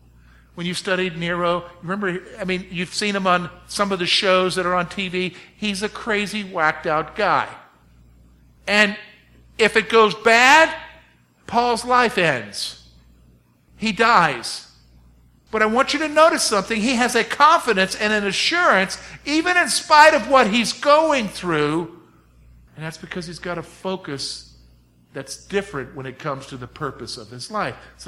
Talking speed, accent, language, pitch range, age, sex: 160 wpm, American, English, 165-260 Hz, 50-69, male